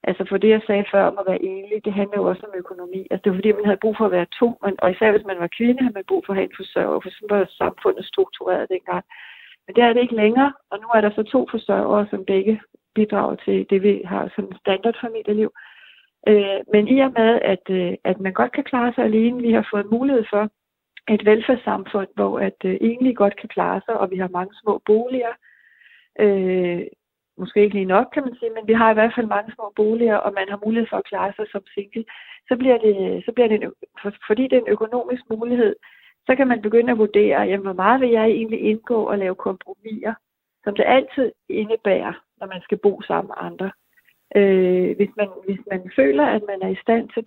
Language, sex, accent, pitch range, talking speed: Danish, female, native, 195-230 Hz, 230 wpm